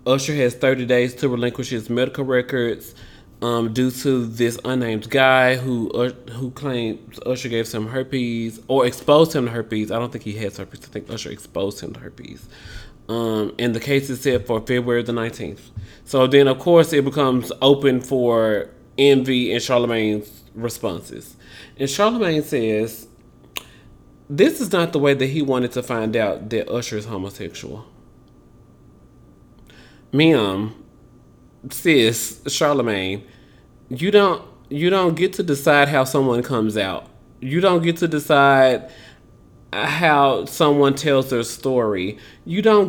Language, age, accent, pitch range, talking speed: English, 20-39, American, 120-150 Hz, 150 wpm